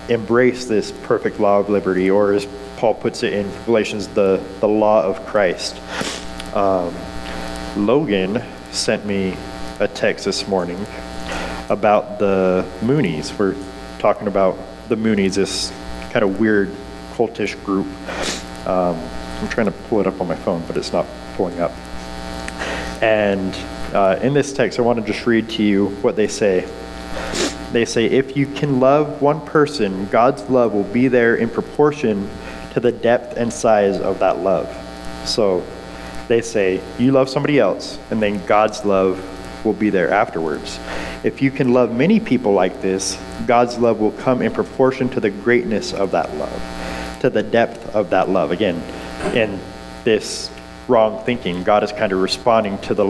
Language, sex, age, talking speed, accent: English, male, 40-59, 165 wpm, American